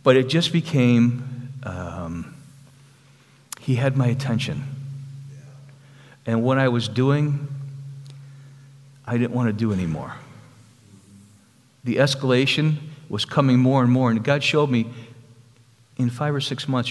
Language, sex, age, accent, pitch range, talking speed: English, male, 50-69, American, 115-140 Hz, 130 wpm